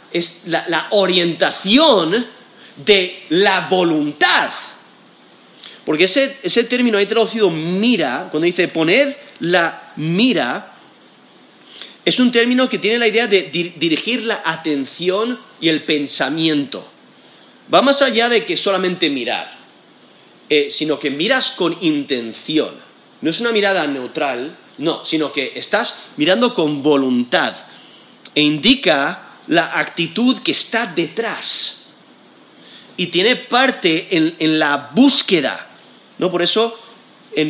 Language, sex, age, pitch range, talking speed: Spanish, male, 30-49, 160-235 Hz, 125 wpm